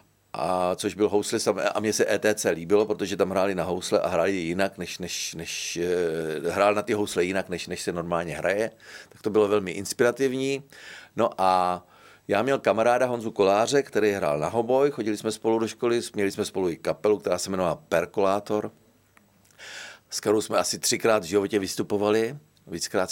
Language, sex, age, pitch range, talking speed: Slovak, male, 40-59, 95-120 Hz, 180 wpm